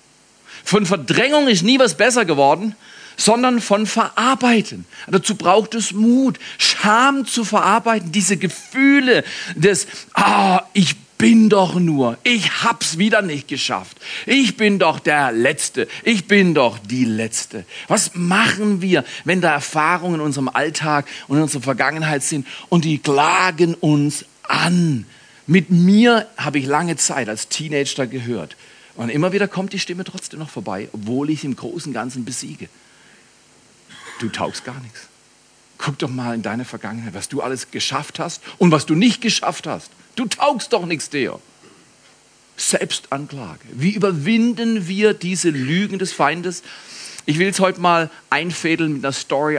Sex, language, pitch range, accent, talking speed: male, German, 140-205 Hz, German, 155 wpm